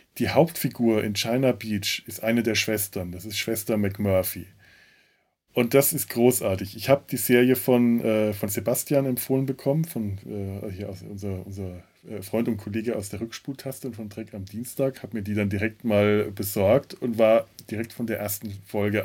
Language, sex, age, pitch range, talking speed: German, male, 20-39, 105-130 Hz, 185 wpm